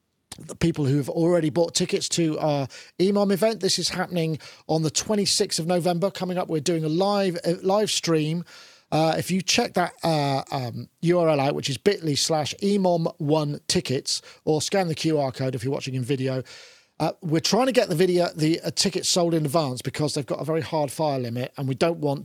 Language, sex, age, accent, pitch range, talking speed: English, male, 40-59, British, 140-180 Hz, 210 wpm